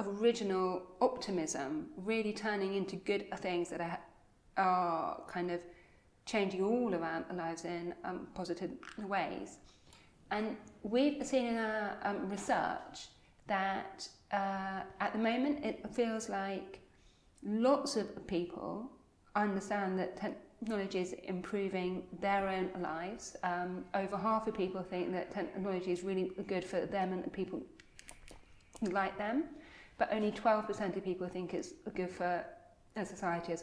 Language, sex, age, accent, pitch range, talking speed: English, female, 40-59, British, 185-220 Hz, 135 wpm